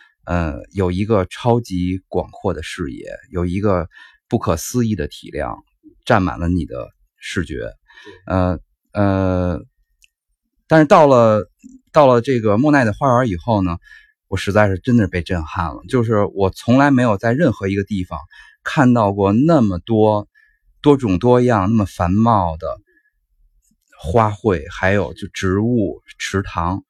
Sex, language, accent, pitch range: male, Chinese, native, 90-120 Hz